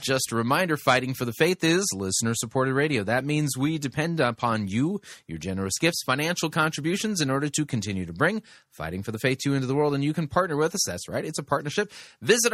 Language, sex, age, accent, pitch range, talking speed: English, male, 30-49, American, 120-165 Hz, 230 wpm